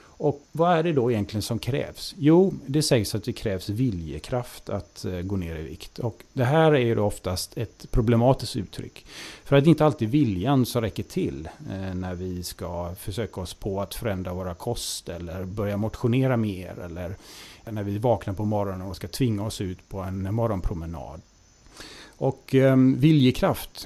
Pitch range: 100-135 Hz